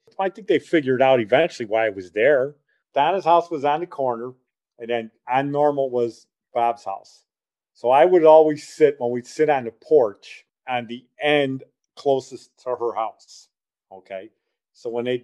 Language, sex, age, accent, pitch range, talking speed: English, male, 40-59, American, 115-160 Hz, 175 wpm